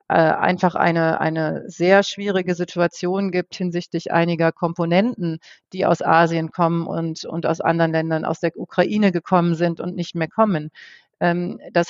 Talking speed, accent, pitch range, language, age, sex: 145 wpm, German, 170-200 Hz, German, 40-59, female